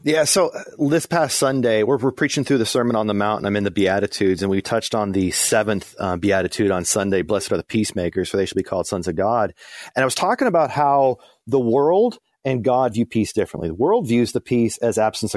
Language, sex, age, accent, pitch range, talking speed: English, male, 30-49, American, 105-135 Hz, 240 wpm